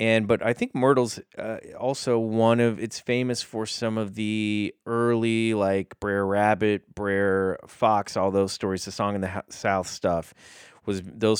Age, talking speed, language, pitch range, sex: 30-49, 180 wpm, English, 95-120 Hz, male